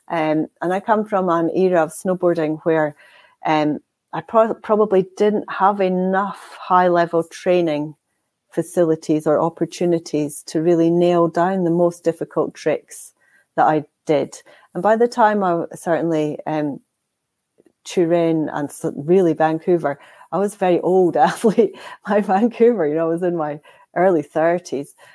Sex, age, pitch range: female, 40-59, 155-185 Hz